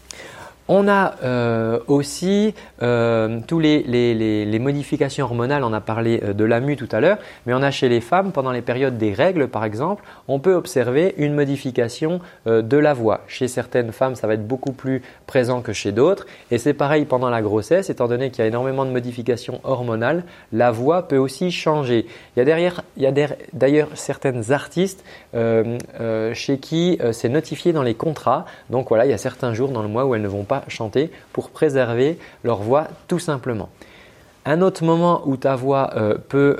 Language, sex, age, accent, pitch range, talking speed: French, male, 30-49, French, 115-145 Hz, 205 wpm